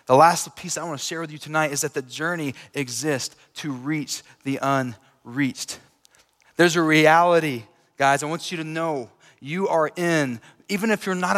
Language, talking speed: English, 185 wpm